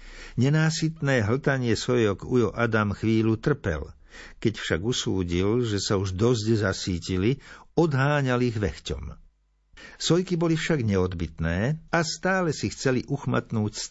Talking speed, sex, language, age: 125 wpm, male, Slovak, 60-79